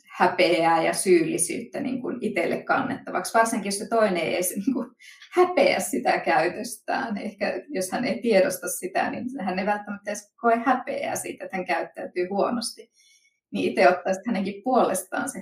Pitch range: 180-250 Hz